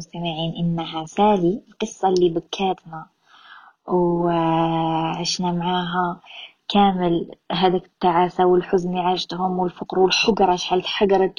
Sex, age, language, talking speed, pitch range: female, 20-39, Arabic, 95 wpm, 170-205 Hz